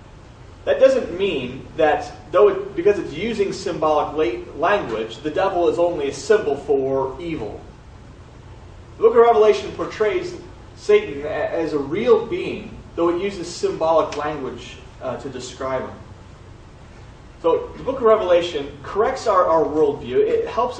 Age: 30-49